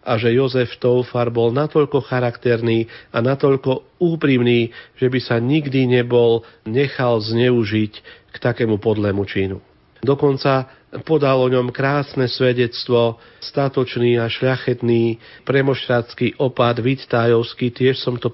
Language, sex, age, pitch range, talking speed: Slovak, male, 40-59, 115-130 Hz, 120 wpm